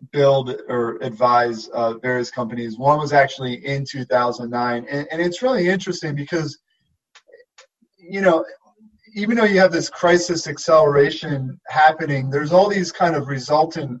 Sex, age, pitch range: male, 30-49, 125-160 Hz